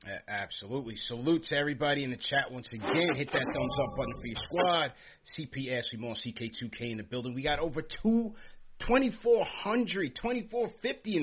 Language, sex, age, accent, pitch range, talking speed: English, male, 30-49, American, 120-155 Hz, 185 wpm